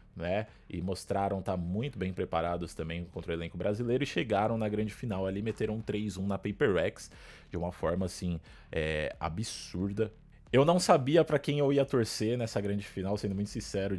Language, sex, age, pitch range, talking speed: Portuguese, male, 20-39, 95-130 Hz, 190 wpm